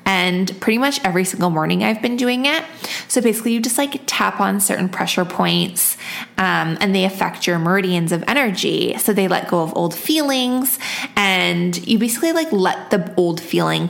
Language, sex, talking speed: English, female, 185 wpm